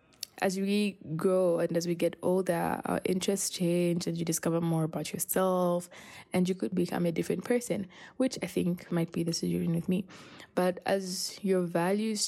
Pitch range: 165-190 Hz